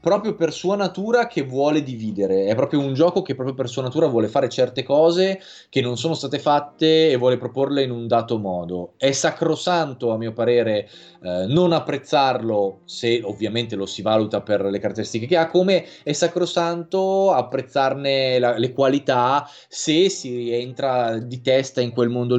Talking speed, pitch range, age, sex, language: 175 wpm, 110-145 Hz, 20-39, male, Italian